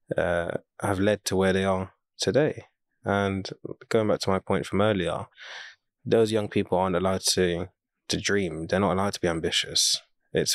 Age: 20-39